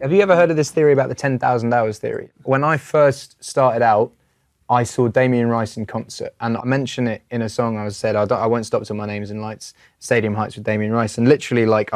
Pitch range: 105-125 Hz